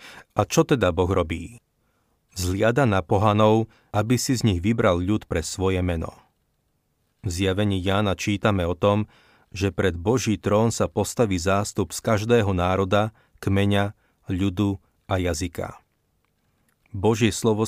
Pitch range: 90-110 Hz